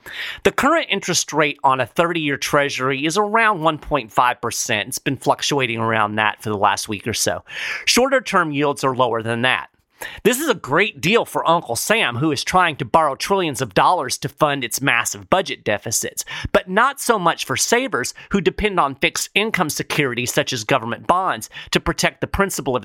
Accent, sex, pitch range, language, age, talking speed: American, male, 130-185 Hz, English, 30-49, 185 wpm